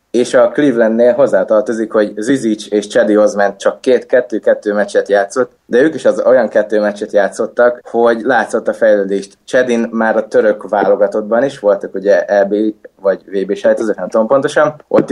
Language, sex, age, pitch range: Hungarian, male, 20-39, 105-130 Hz